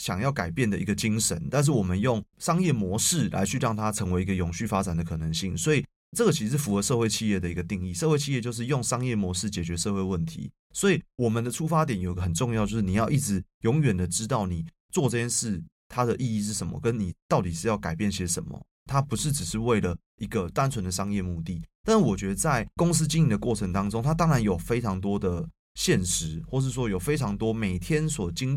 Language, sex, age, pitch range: Chinese, male, 20-39, 95-130 Hz